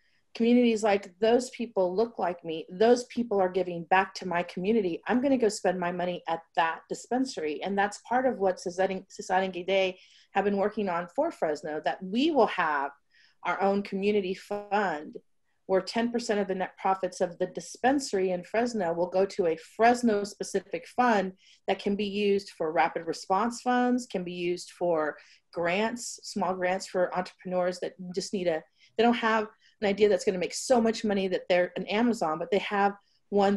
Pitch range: 180-210 Hz